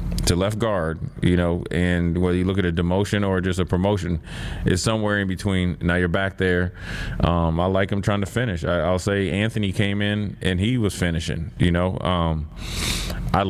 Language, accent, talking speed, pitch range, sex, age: English, American, 200 wpm, 85-105 Hz, male, 30-49